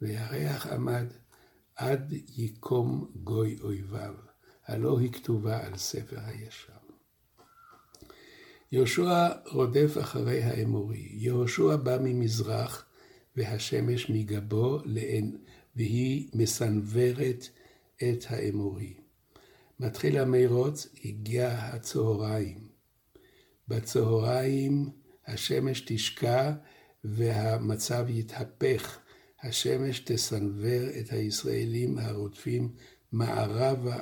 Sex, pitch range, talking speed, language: male, 110-135 Hz, 70 wpm, Hebrew